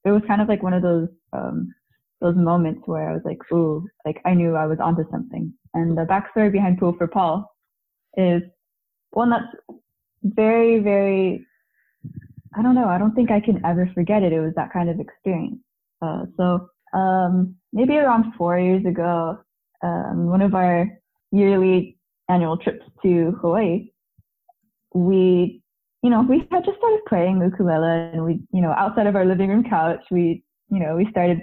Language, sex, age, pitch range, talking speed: English, female, 20-39, 175-225 Hz, 180 wpm